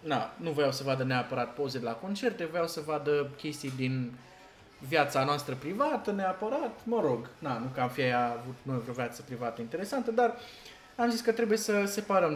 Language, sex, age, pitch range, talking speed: Romanian, male, 20-39, 135-205 Hz, 195 wpm